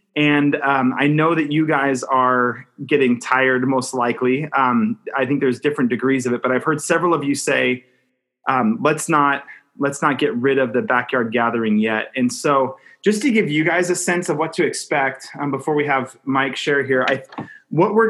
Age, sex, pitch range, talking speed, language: 30-49, male, 130-165 Hz, 205 wpm, English